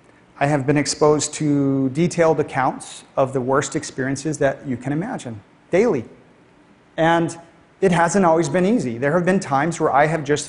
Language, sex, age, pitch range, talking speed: English, male, 40-59, 140-175 Hz, 170 wpm